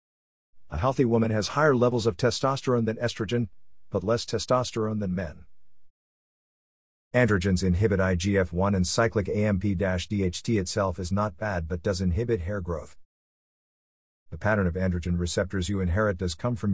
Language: English